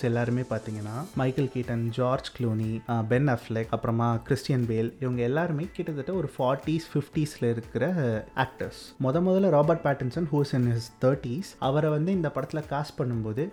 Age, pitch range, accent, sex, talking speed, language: 30-49, 120-155 Hz, native, male, 145 wpm, Tamil